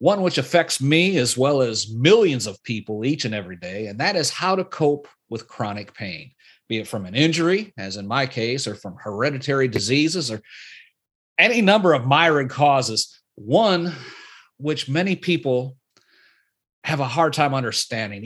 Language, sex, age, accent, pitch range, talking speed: English, male, 40-59, American, 115-160 Hz, 170 wpm